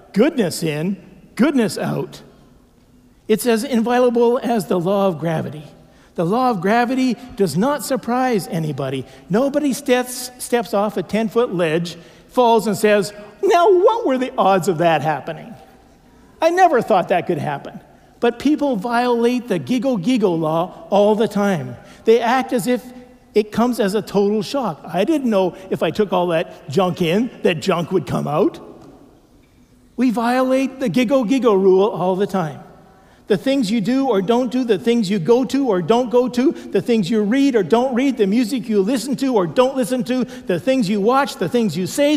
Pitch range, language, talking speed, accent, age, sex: 195-255 Hz, English, 180 wpm, American, 50-69, male